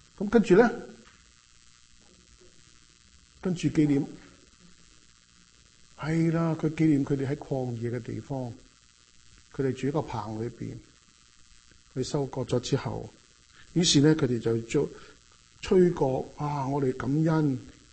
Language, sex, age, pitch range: Chinese, male, 50-69, 115-155 Hz